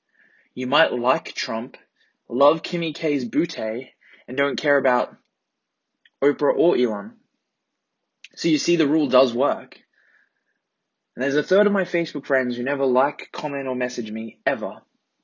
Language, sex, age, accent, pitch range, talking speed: English, male, 20-39, Australian, 120-160 Hz, 150 wpm